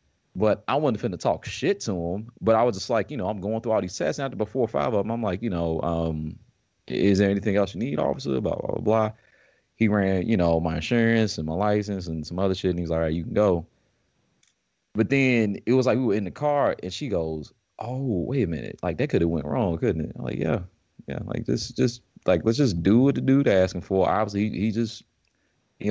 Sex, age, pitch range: male, 30-49, 85-115 Hz